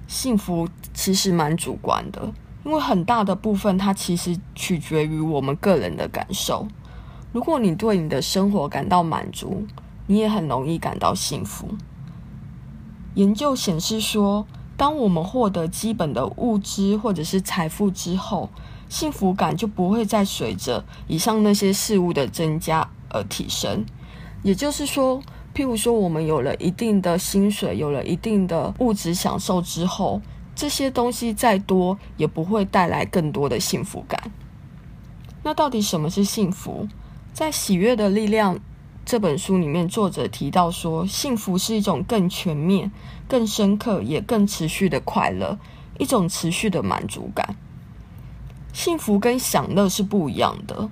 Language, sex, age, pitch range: Chinese, female, 20-39, 175-220 Hz